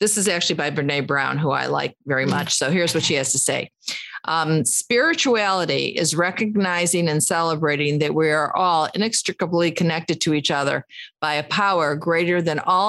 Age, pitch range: 50-69, 160-215 Hz